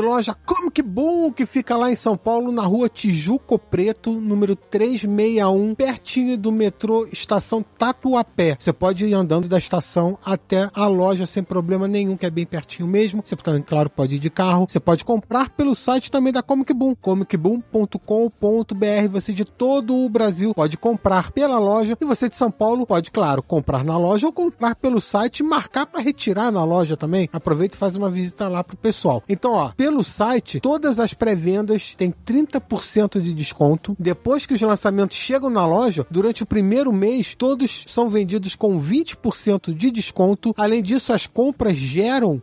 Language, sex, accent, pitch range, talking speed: Portuguese, male, Brazilian, 190-255 Hz, 180 wpm